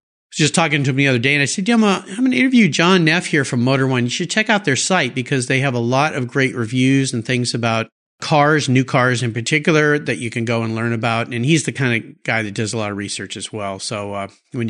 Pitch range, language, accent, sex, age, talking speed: 120-200 Hz, English, American, male, 50-69, 280 wpm